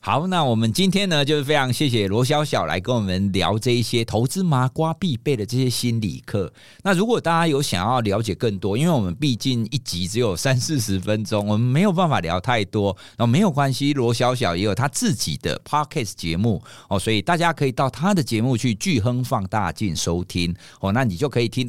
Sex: male